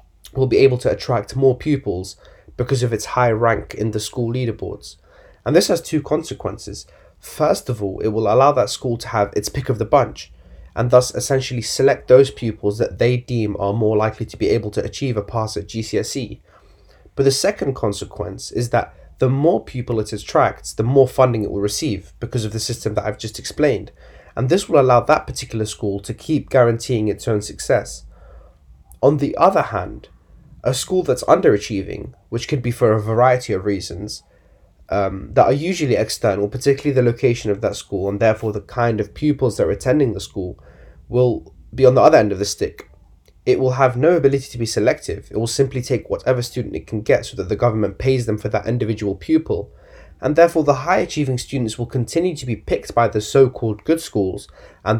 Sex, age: male, 20-39